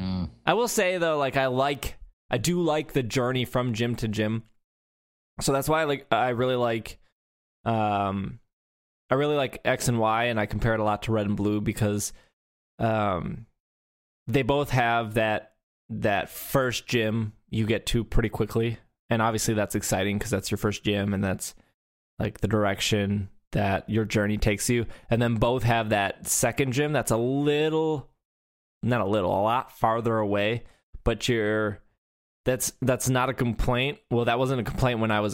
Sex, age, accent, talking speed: male, 20-39, American, 180 wpm